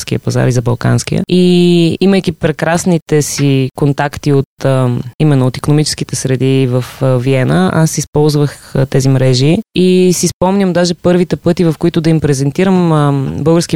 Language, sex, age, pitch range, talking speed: Bulgarian, female, 20-39, 140-170 Hz, 140 wpm